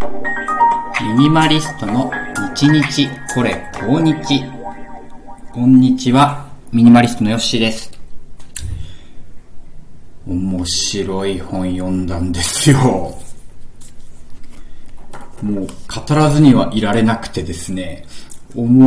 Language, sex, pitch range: Japanese, male, 95-145 Hz